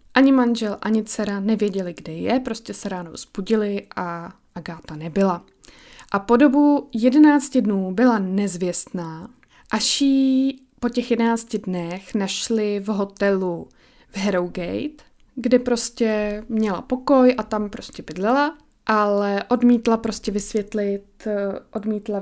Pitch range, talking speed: 195-240 Hz, 120 wpm